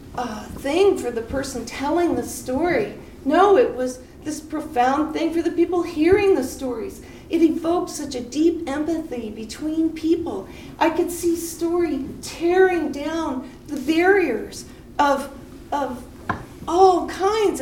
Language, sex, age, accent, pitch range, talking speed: English, female, 40-59, American, 260-345 Hz, 135 wpm